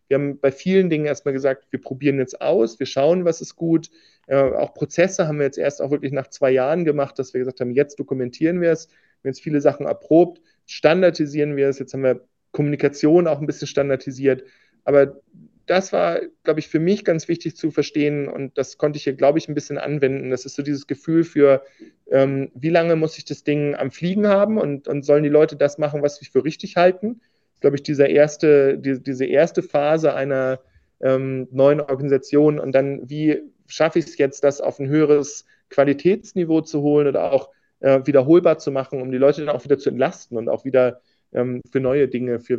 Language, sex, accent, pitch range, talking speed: German, male, German, 135-160 Hz, 210 wpm